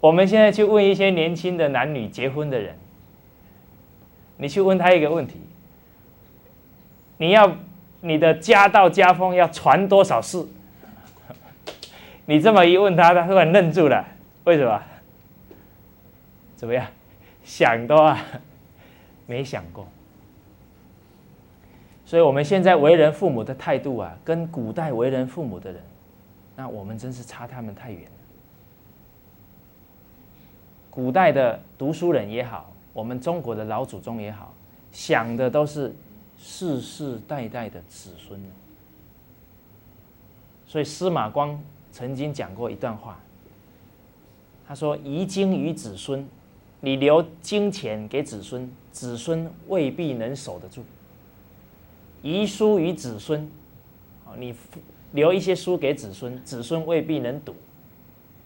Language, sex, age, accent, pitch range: English, male, 20-39, Chinese, 110-170 Hz